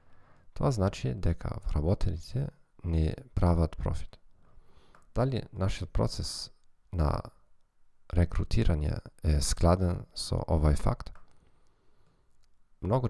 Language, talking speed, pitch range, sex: Dutch, 80 wpm, 80-100 Hz, male